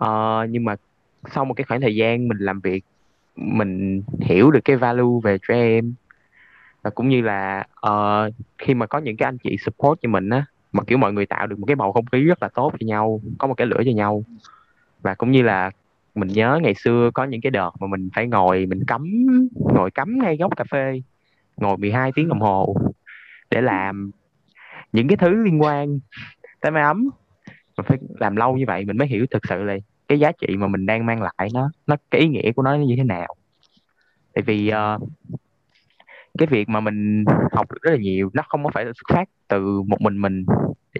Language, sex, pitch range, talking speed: Vietnamese, male, 100-135 Hz, 220 wpm